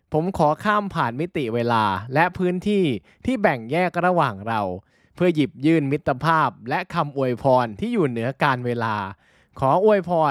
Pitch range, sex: 120-170 Hz, male